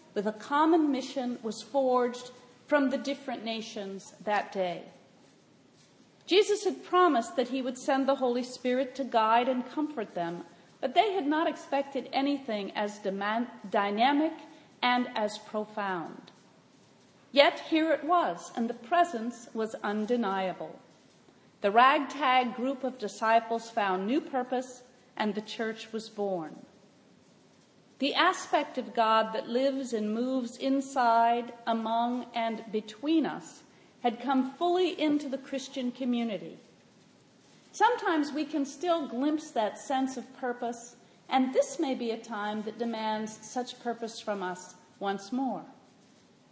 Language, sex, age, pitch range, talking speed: English, female, 40-59, 220-280 Hz, 135 wpm